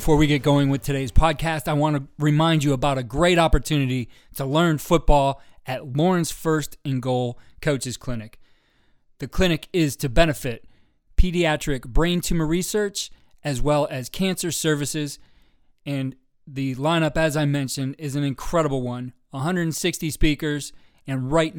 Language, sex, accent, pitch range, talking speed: English, male, American, 135-160 Hz, 150 wpm